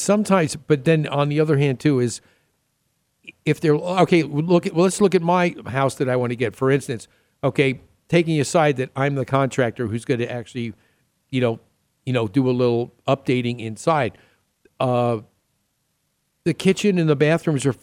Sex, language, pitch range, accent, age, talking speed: male, English, 125-160 Hz, American, 50-69, 180 wpm